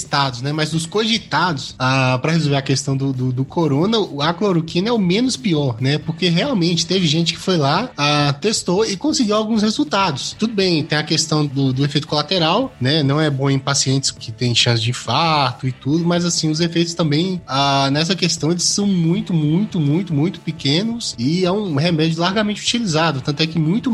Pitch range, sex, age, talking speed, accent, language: 140-180 Hz, male, 20-39, 205 wpm, Brazilian, Portuguese